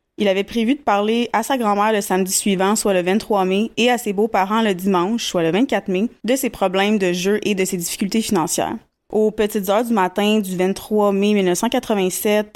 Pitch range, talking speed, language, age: 190-225 Hz, 210 wpm, French, 20-39